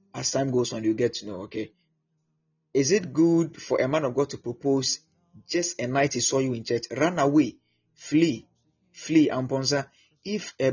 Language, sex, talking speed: English, male, 190 wpm